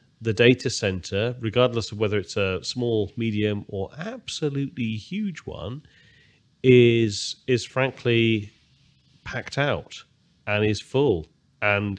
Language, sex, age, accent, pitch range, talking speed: English, male, 30-49, British, 95-115 Hz, 115 wpm